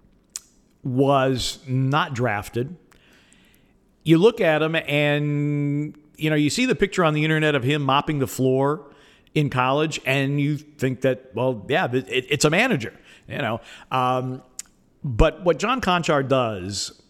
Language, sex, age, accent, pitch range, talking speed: English, male, 50-69, American, 120-150 Hz, 145 wpm